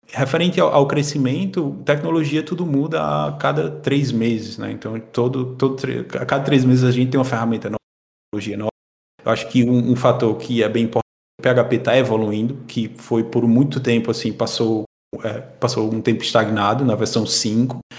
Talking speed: 185 wpm